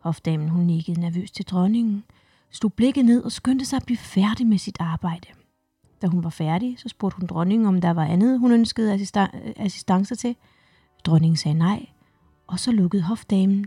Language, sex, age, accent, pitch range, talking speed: Danish, female, 30-49, native, 170-220 Hz, 185 wpm